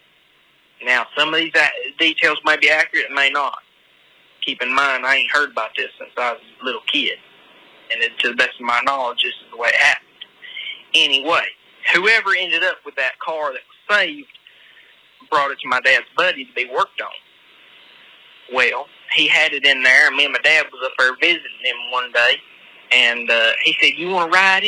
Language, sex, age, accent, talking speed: English, male, 30-49, American, 205 wpm